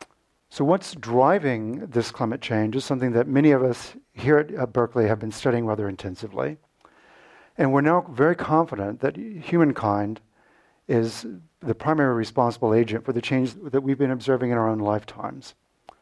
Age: 50-69